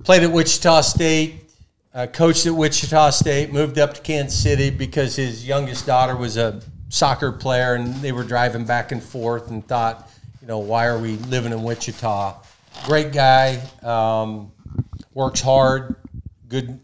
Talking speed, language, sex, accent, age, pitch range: 160 wpm, English, male, American, 50-69, 115-130 Hz